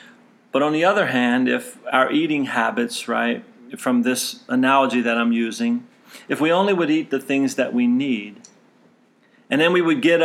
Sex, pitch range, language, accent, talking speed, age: male, 130-200 Hz, English, American, 180 wpm, 40-59